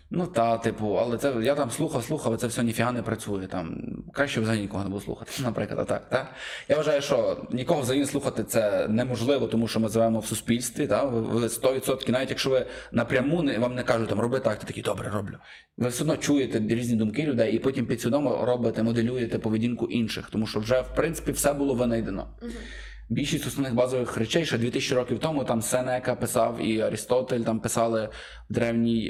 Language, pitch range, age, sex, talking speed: Ukrainian, 110-130 Hz, 20-39, male, 190 wpm